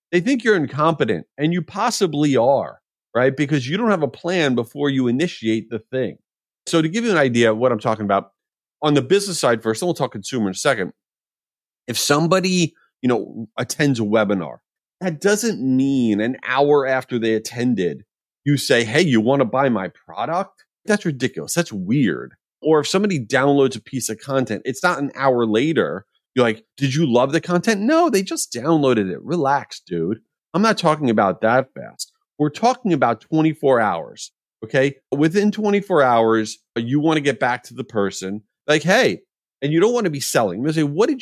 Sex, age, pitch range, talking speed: male, 30-49, 120-170 Hz, 200 wpm